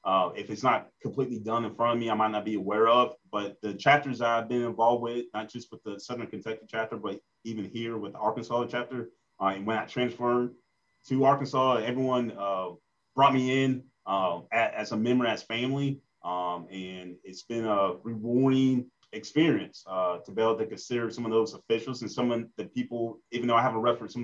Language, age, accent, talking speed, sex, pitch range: English, 30-49, American, 210 wpm, male, 110-130 Hz